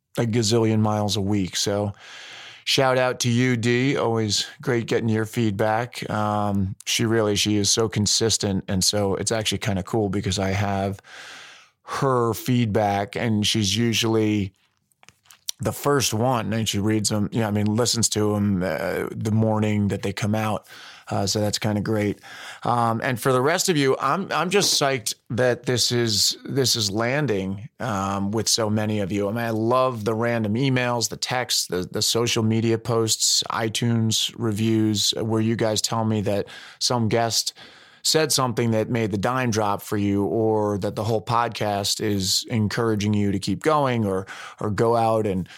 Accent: American